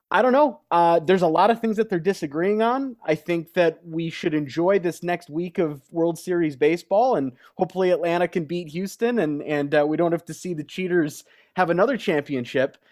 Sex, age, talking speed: male, 30-49, 210 wpm